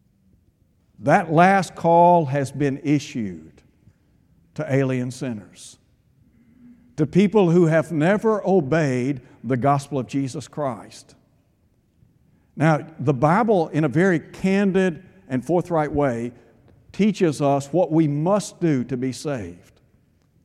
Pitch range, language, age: 140-190 Hz, English, 60-79